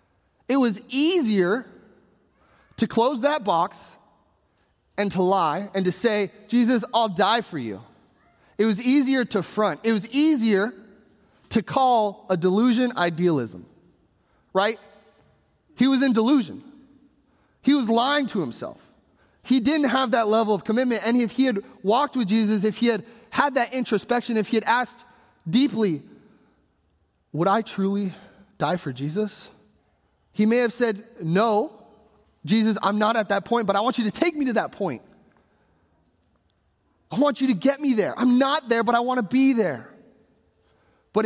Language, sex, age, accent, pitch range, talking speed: English, male, 30-49, American, 195-250 Hz, 160 wpm